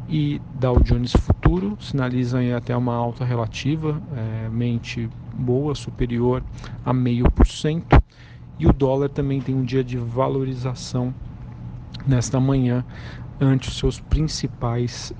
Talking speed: 120 wpm